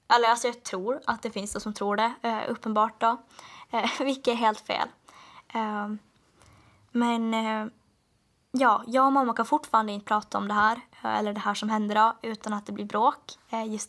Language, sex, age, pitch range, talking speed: Swedish, female, 10-29, 210-240 Hz, 175 wpm